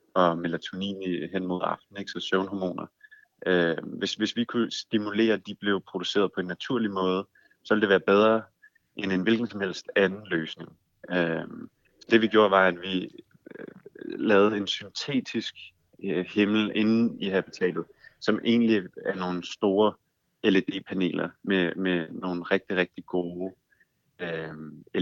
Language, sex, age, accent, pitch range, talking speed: Danish, male, 30-49, native, 90-110 Hz, 135 wpm